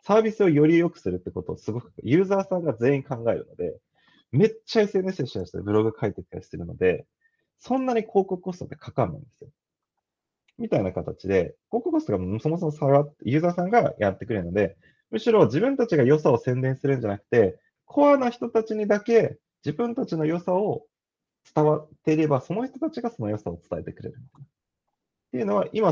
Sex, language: male, Japanese